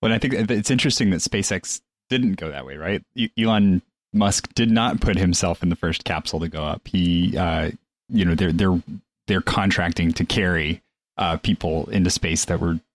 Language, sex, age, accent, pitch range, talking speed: English, male, 30-49, American, 85-100 Hz, 190 wpm